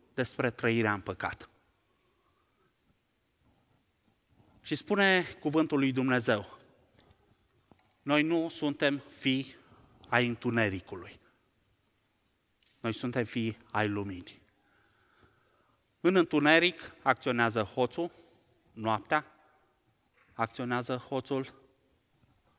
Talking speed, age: 70 wpm, 30-49